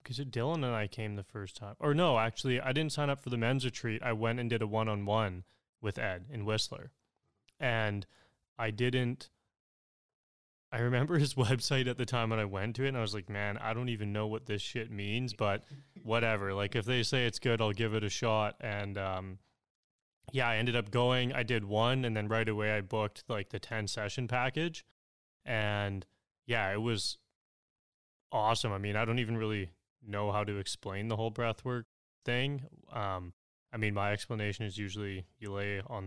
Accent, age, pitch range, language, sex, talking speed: American, 20-39, 100-120 Hz, English, male, 200 wpm